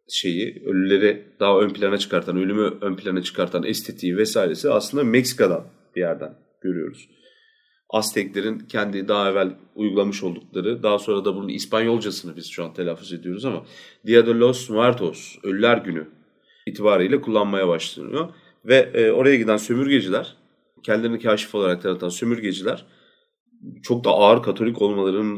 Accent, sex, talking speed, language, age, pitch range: native, male, 135 wpm, Turkish, 40-59, 95-120 Hz